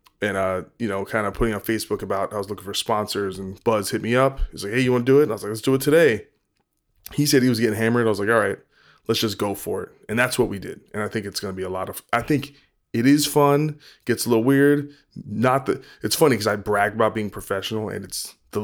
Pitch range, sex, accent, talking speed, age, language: 100-115 Hz, male, American, 285 wpm, 20-39, English